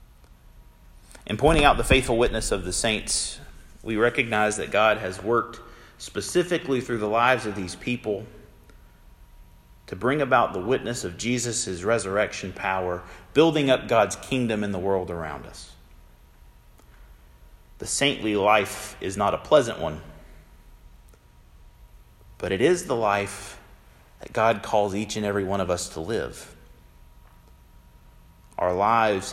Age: 40-59